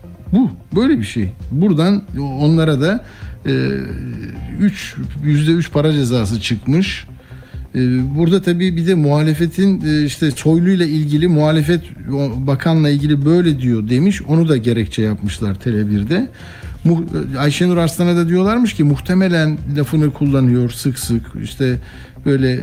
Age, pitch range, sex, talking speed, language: 60-79, 120-170 Hz, male, 135 wpm, Turkish